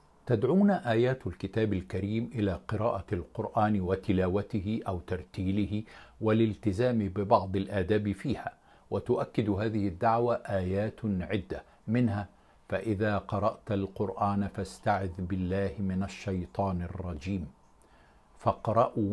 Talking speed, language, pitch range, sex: 90 wpm, Arabic, 95-110 Hz, male